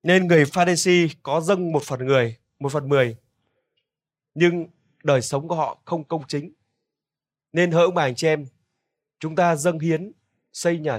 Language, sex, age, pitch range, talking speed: Vietnamese, male, 20-39, 145-195 Hz, 175 wpm